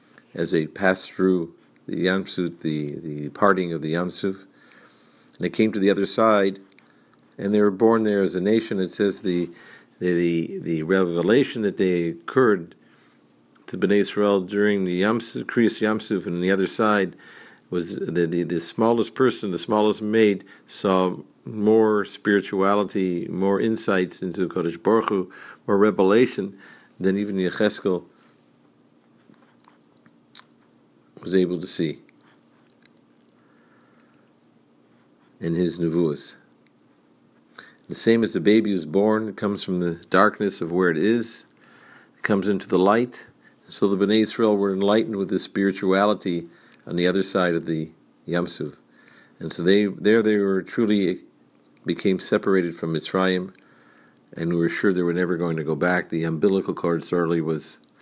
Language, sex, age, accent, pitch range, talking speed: English, male, 50-69, American, 85-105 Hz, 150 wpm